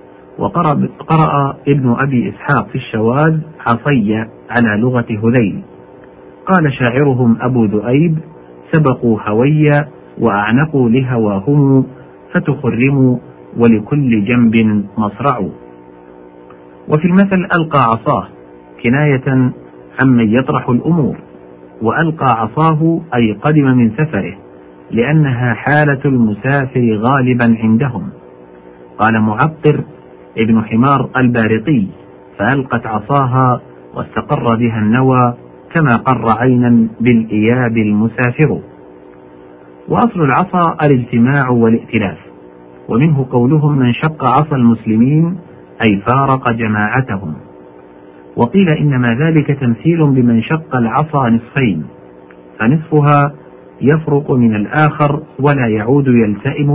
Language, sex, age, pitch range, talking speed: Arabic, male, 50-69, 105-140 Hz, 90 wpm